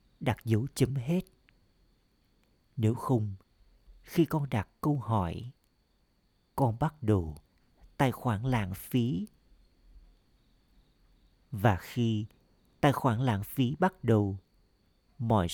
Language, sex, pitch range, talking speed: Vietnamese, male, 100-140 Hz, 105 wpm